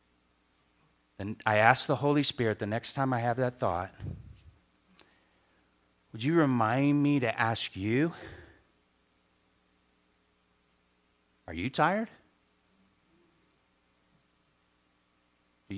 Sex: male